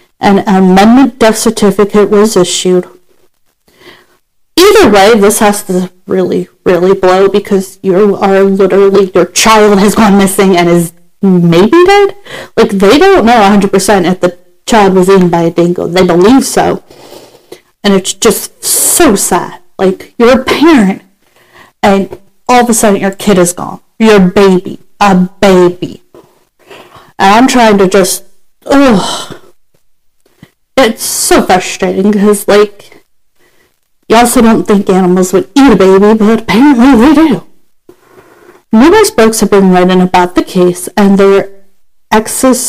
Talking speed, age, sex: 140 wpm, 40-59, female